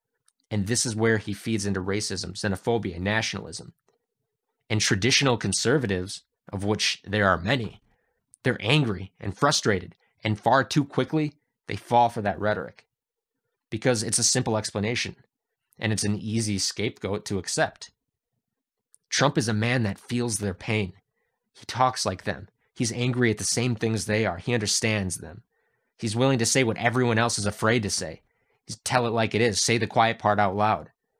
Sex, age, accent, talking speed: male, 20-39, American, 170 wpm